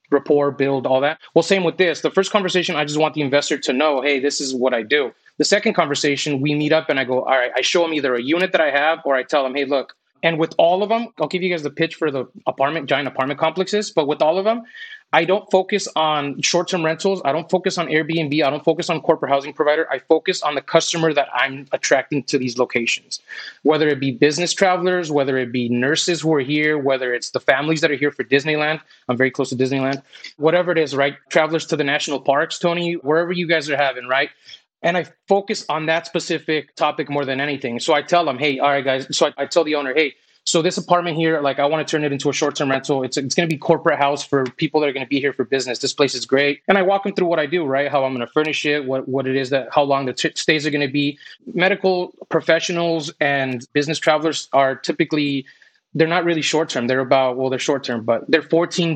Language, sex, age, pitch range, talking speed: English, male, 30-49, 140-165 Hz, 255 wpm